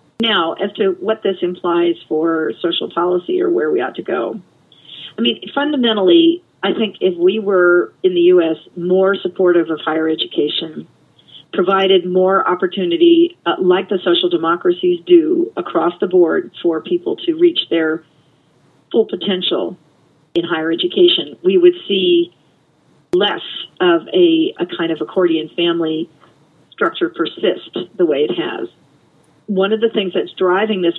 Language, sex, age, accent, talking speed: English, female, 40-59, American, 150 wpm